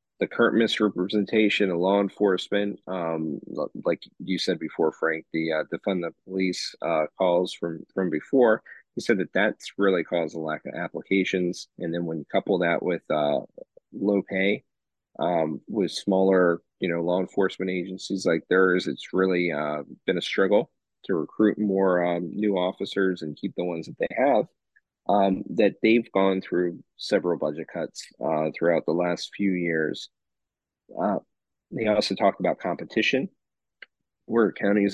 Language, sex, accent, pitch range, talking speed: English, male, American, 85-100 Hz, 160 wpm